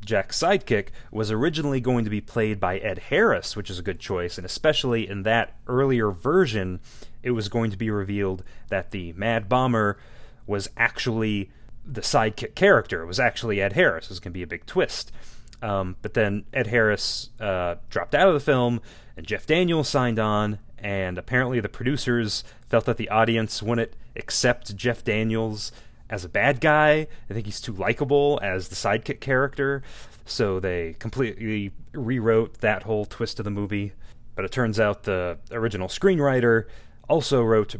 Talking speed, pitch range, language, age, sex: 170 wpm, 100-120 Hz, English, 30-49, male